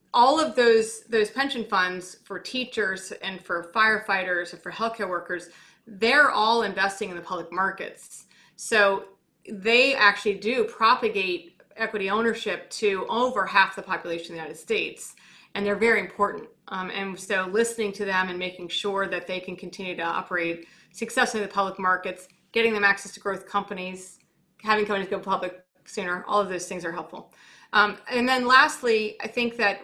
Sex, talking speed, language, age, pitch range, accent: female, 175 wpm, English, 30-49, 185-230 Hz, American